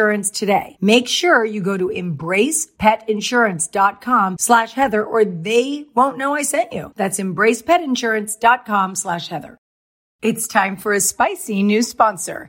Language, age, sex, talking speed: English, 40-59, female, 130 wpm